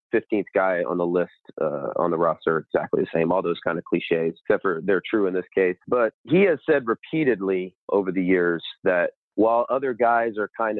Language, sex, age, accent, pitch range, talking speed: English, male, 30-49, American, 90-115 Hz, 210 wpm